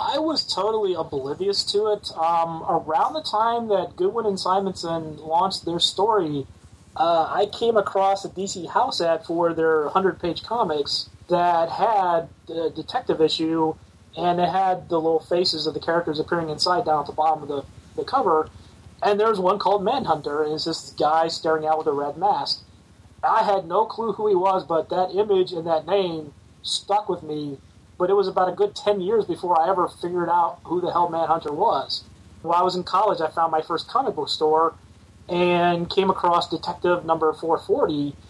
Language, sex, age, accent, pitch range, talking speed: English, male, 30-49, American, 155-190 Hz, 190 wpm